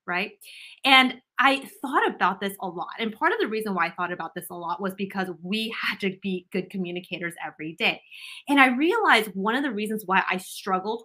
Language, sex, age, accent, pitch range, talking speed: English, female, 20-39, American, 185-255 Hz, 215 wpm